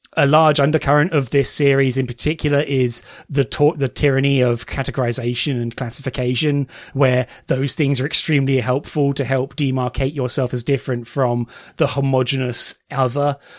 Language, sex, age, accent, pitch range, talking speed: English, male, 20-39, British, 125-150 Hz, 140 wpm